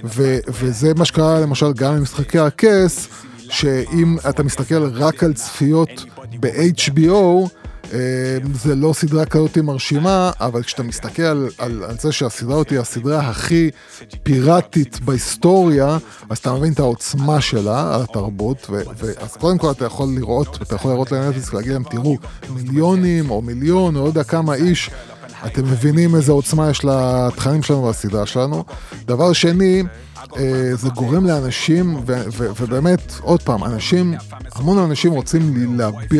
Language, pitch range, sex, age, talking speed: Hebrew, 120-160 Hz, male, 20-39, 150 wpm